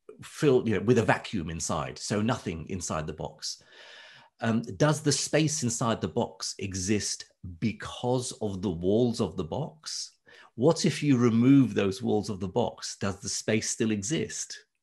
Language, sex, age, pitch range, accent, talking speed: Romanian, male, 40-59, 100-135 Hz, British, 160 wpm